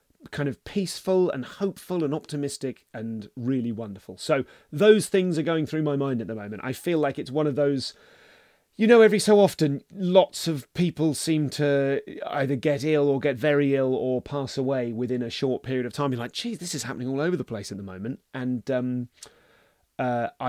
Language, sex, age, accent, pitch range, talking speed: English, male, 30-49, British, 115-150 Hz, 205 wpm